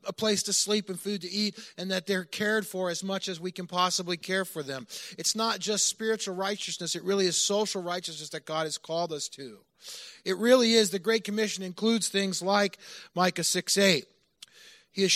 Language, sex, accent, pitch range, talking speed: English, male, American, 155-195 Hz, 205 wpm